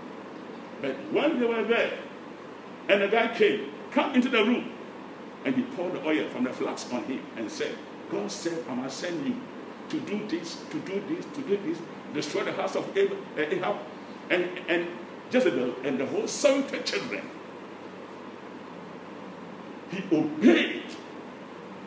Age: 60-79